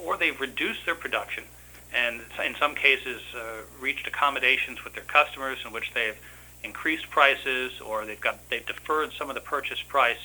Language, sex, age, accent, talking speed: English, male, 40-59, American, 175 wpm